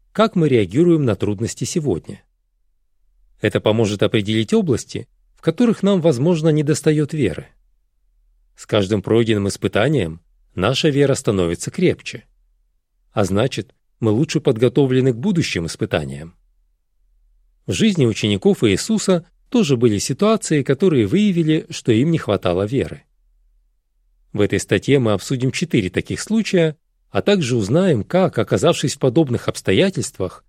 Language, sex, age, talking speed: Russian, male, 40-59, 120 wpm